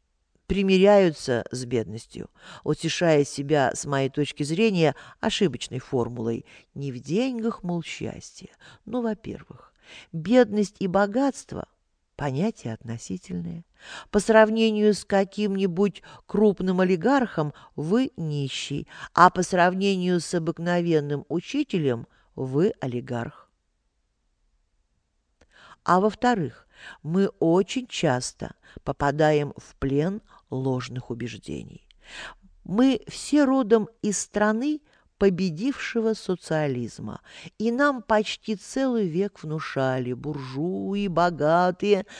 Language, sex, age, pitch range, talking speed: Russian, female, 50-69, 145-205 Hz, 90 wpm